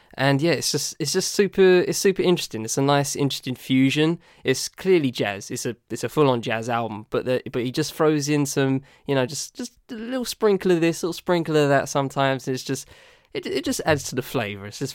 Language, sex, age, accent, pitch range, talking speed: English, male, 10-29, British, 120-145 Hz, 240 wpm